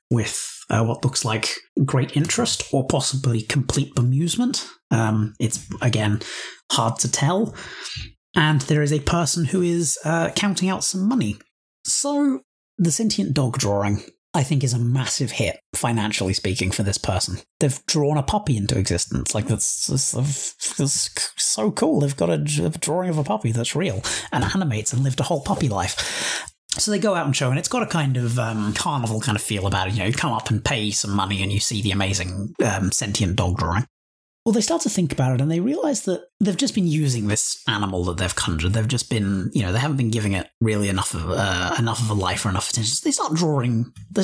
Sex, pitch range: male, 105-150 Hz